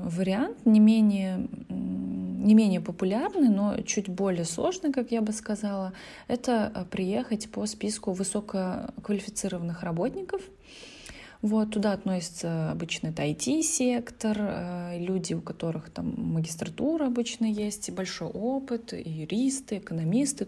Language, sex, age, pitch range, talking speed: Russian, female, 20-39, 180-230 Hz, 110 wpm